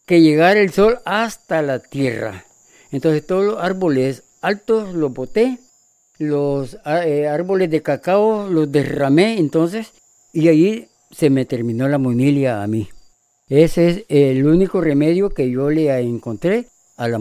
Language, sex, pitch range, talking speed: Spanish, female, 140-185 Hz, 145 wpm